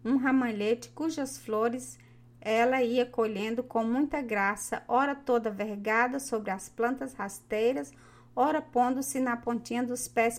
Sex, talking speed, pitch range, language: female, 135 wpm, 215-275 Hz, Portuguese